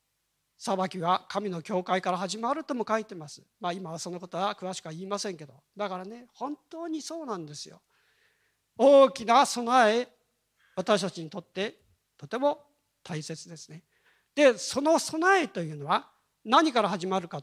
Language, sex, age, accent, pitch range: Japanese, male, 40-59, native, 180-285 Hz